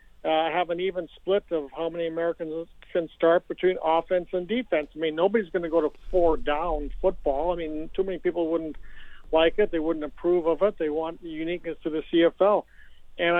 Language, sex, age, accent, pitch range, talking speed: English, male, 60-79, American, 155-185 Hz, 205 wpm